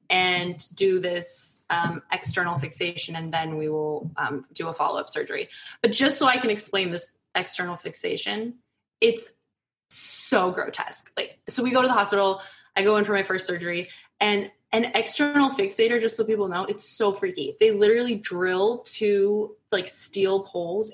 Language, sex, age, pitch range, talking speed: English, female, 20-39, 175-225 Hz, 170 wpm